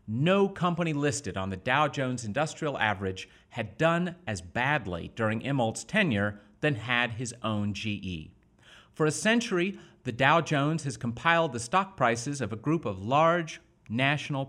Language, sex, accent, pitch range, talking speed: English, male, American, 115-175 Hz, 155 wpm